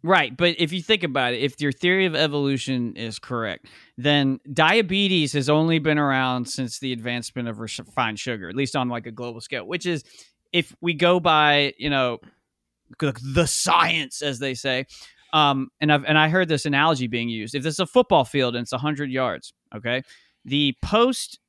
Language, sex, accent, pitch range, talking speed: English, male, American, 130-175 Hz, 195 wpm